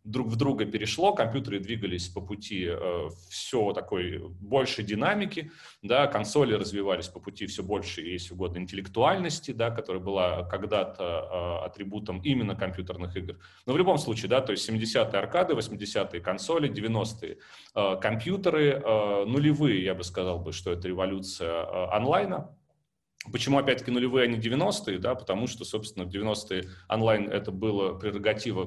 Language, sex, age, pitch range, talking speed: Russian, male, 30-49, 95-130 Hz, 150 wpm